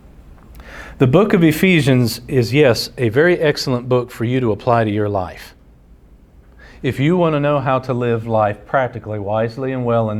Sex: male